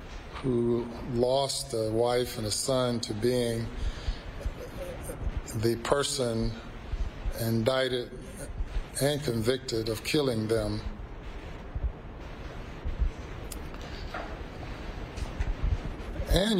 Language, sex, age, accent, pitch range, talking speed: English, male, 50-69, American, 105-130 Hz, 65 wpm